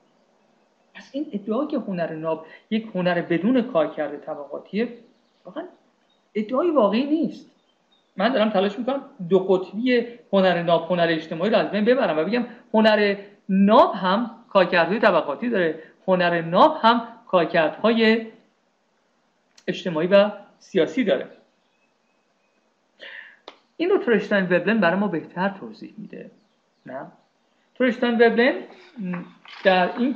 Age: 50-69